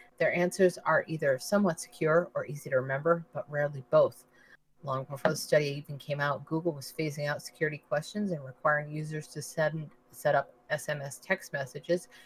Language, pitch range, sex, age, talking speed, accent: English, 145-170 Hz, female, 30-49, 170 wpm, American